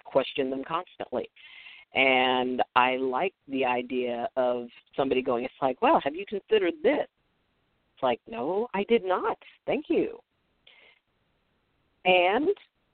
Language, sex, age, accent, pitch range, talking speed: English, female, 50-69, American, 140-210 Hz, 125 wpm